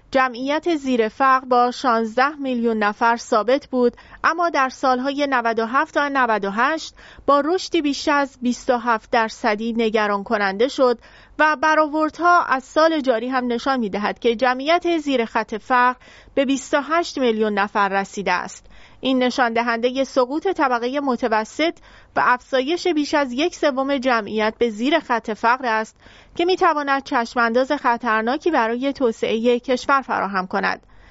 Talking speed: 135 wpm